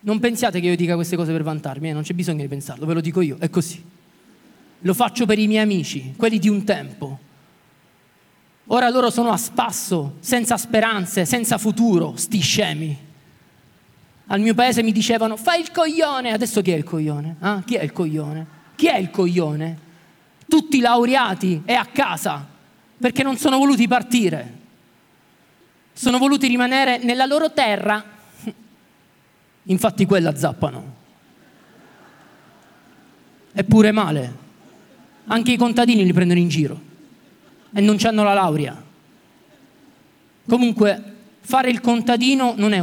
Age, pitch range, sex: 30-49, 170-240 Hz, male